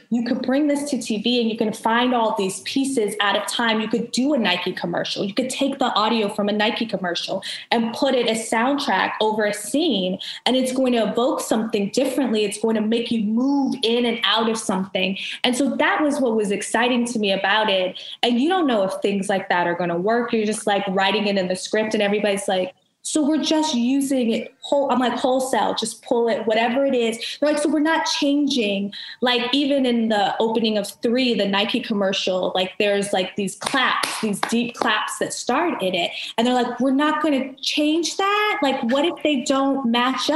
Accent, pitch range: American, 205-260 Hz